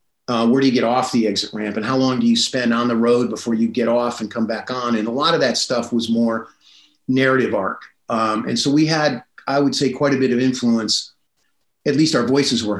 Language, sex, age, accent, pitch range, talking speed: English, male, 40-59, American, 115-130 Hz, 255 wpm